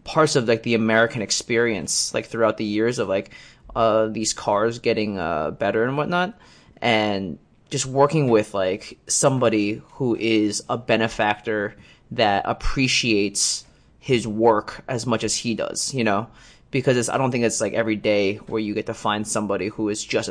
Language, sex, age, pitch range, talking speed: English, male, 20-39, 105-120 Hz, 175 wpm